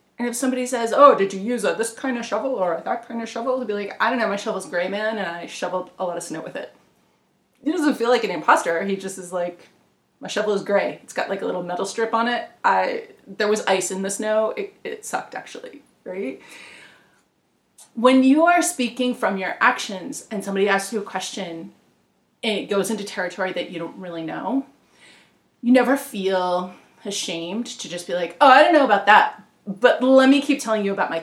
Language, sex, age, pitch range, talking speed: English, female, 30-49, 190-260 Hz, 230 wpm